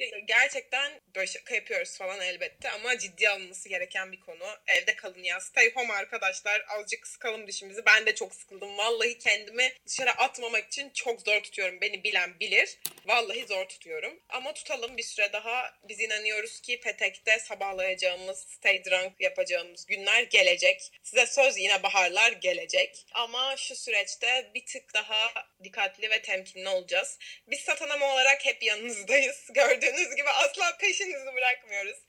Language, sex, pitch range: Turkish, female, 200-280 Hz